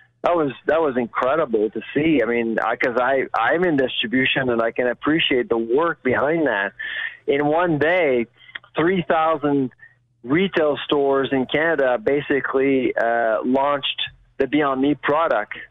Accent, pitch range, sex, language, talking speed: American, 125-155 Hz, male, English, 145 wpm